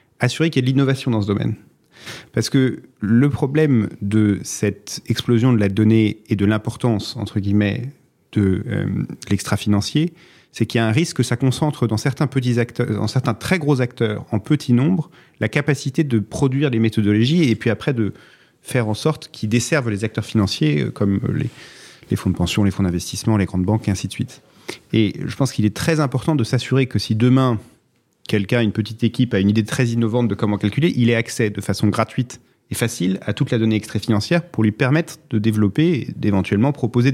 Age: 30-49